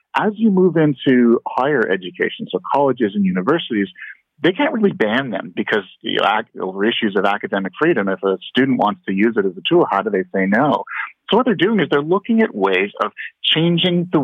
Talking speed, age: 215 wpm, 40-59